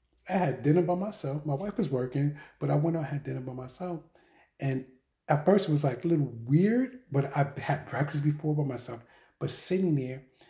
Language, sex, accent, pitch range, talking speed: English, male, American, 125-155 Hz, 210 wpm